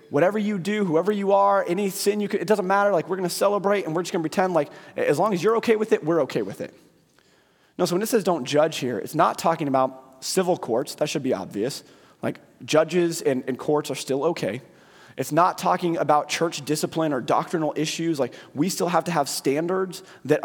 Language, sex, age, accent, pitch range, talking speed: English, male, 30-49, American, 145-185 Hz, 230 wpm